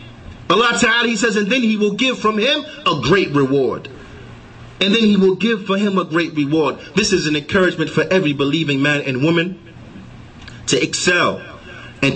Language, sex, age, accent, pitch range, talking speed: English, male, 30-49, American, 160-205 Hz, 185 wpm